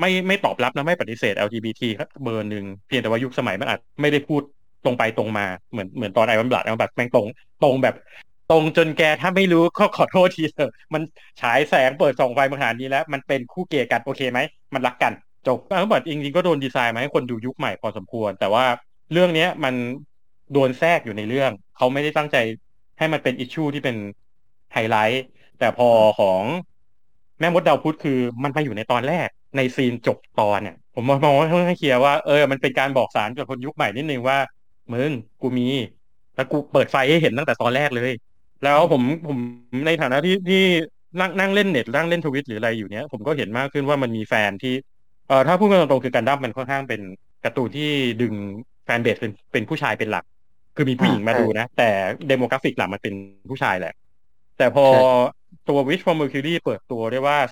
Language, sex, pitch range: Thai, male, 115-150 Hz